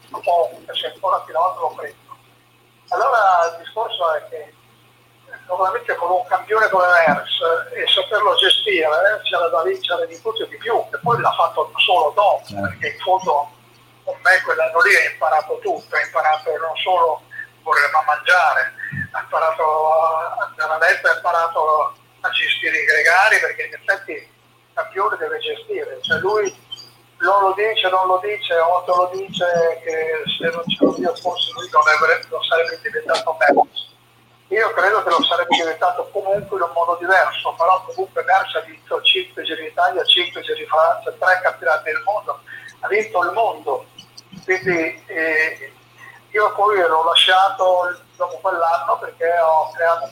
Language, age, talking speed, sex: Italian, 40-59, 160 wpm, male